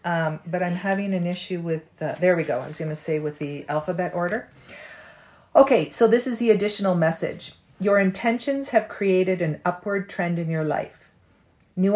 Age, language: 40-59, English